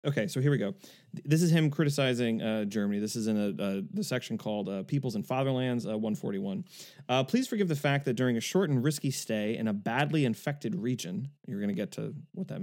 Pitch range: 120-165 Hz